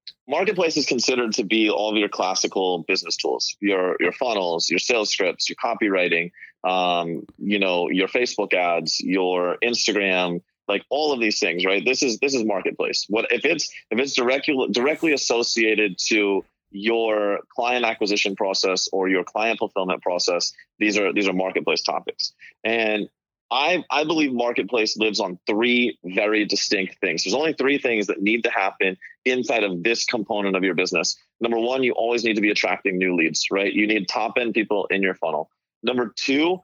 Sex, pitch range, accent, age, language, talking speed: male, 95-115 Hz, American, 30-49, English, 175 wpm